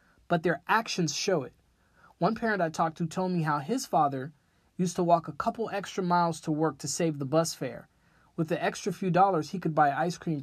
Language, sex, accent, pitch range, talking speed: English, male, American, 150-180 Hz, 225 wpm